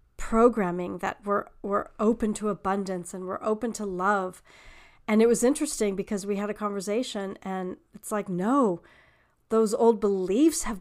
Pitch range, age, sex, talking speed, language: 195-230 Hz, 40-59, female, 160 wpm, English